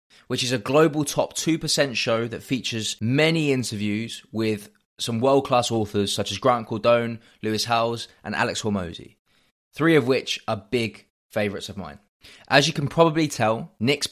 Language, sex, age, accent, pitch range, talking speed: English, male, 20-39, British, 105-140 Hz, 160 wpm